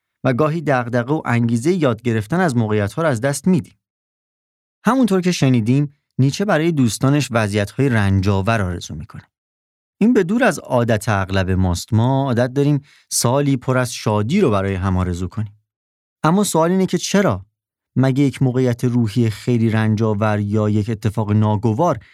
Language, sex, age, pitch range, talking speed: Persian, male, 30-49, 100-135 Hz, 160 wpm